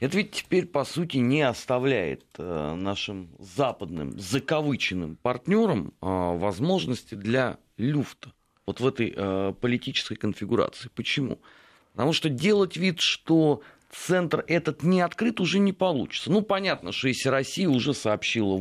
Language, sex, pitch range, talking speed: Russian, male, 105-150 Hz, 125 wpm